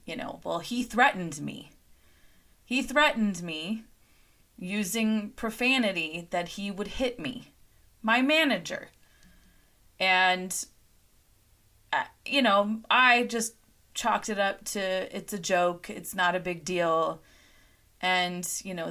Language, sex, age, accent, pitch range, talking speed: English, female, 20-39, American, 175-220 Hz, 120 wpm